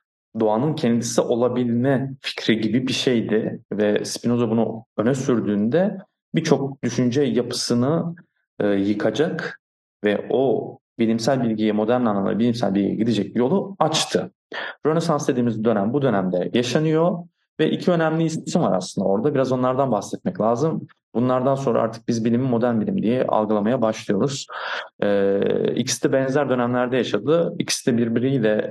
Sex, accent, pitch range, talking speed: male, native, 105-135 Hz, 135 wpm